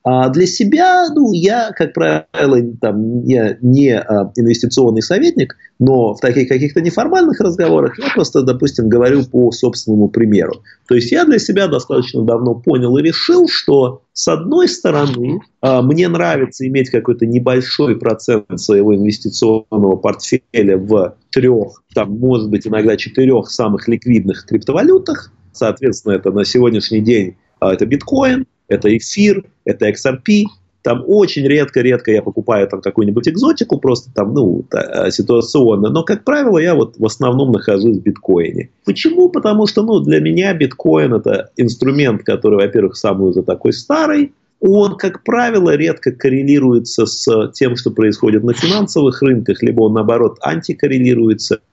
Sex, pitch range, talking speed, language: male, 110-175 Hz, 135 wpm, Russian